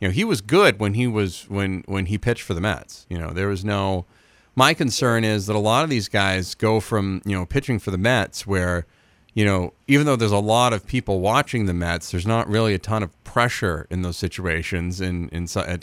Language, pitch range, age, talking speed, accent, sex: English, 100-140 Hz, 40-59, 240 wpm, American, male